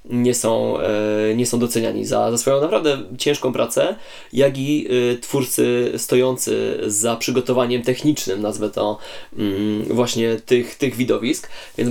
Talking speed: 125 wpm